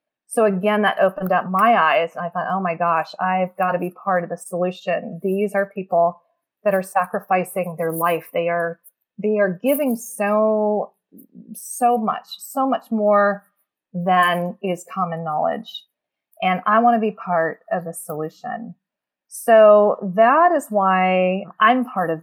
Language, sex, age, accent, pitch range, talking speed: English, female, 30-49, American, 185-220 Hz, 160 wpm